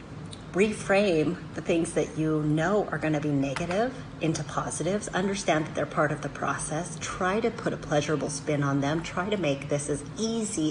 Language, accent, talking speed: English, American, 185 wpm